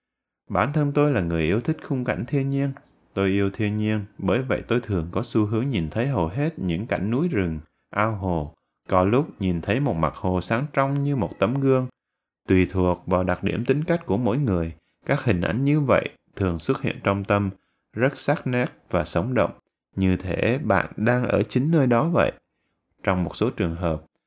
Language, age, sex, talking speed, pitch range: Vietnamese, 20-39, male, 210 wpm, 90-130 Hz